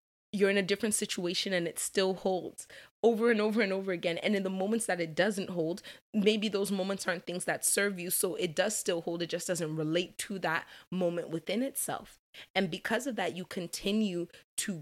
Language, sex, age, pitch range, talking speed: English, female, 20-39, 170-205 Hz, 210 wpm